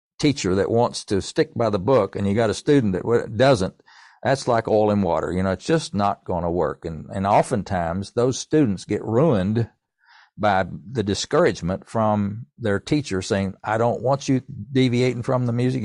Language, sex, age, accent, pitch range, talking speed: English, male, 60-79, American, 95-115 Hz, 190 wpm